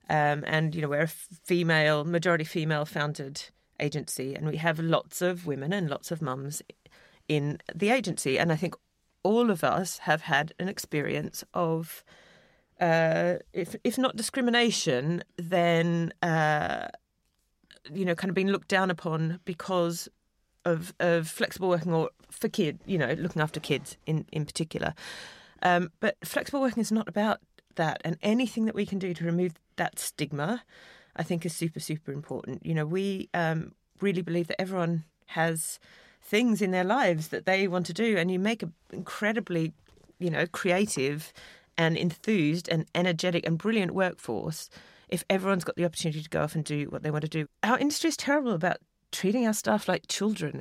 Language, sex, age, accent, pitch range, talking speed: English, female, 30-49, British, 160-195 Hz, 175 wpm